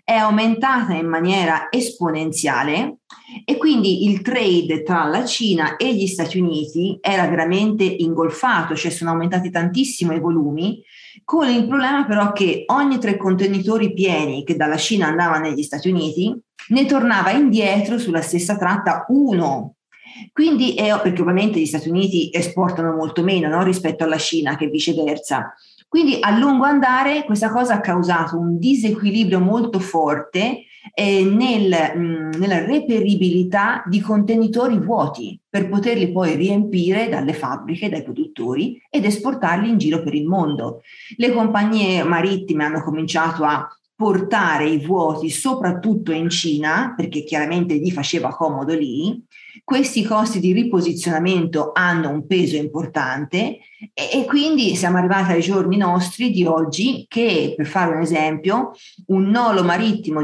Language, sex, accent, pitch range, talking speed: Italian, female, native, 160-220 Hz, 140 wpm